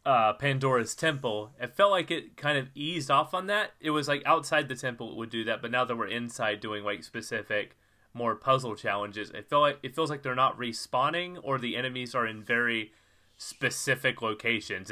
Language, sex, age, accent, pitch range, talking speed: English, male, 30-49, American, 105-140 Hz, 200 wpm